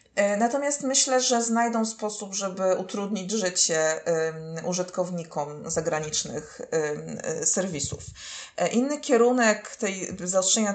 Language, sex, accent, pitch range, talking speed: Polish, female, native, 175-225 Hz, 85 wpm